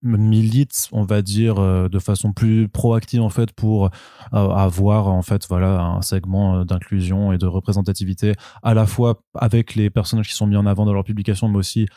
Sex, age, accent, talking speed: male, 20-39, French, 185 wpm